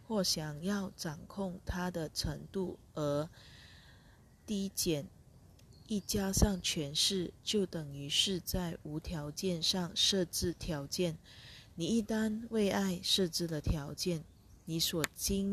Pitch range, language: 150-190 Hz, Chinese